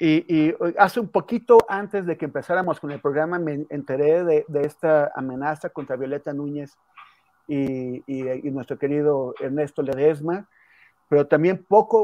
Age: 40-59